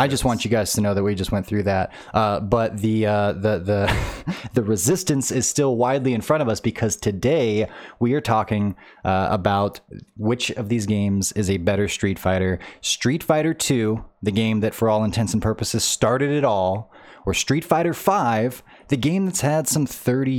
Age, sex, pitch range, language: 20-39, male, 110-130 Hz, English